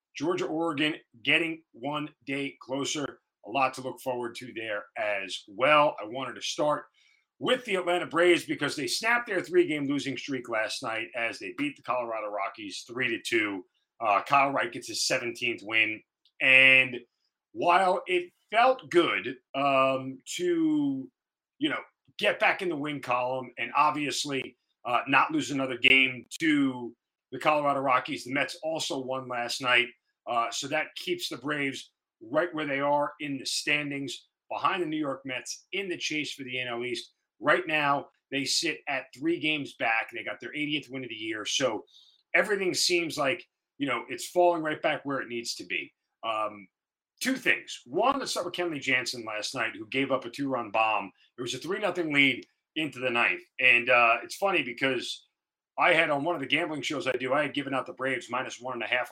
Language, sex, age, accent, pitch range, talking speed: English, male, 40-59, American, 130-180 Hz, 190 wpm